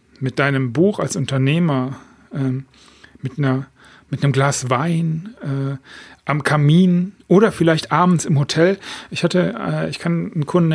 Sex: male